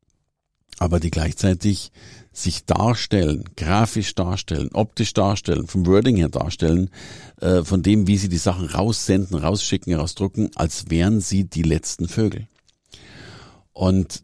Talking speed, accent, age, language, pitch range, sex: 125 wpm, German, 50-69, German, 85-110 Hz, male